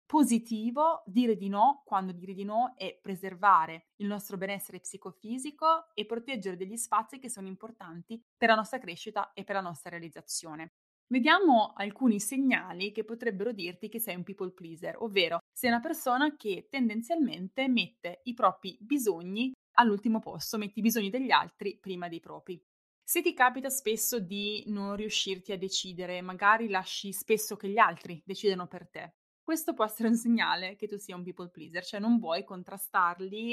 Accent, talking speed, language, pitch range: native, 170 wpm, Italian, 180-235 Hz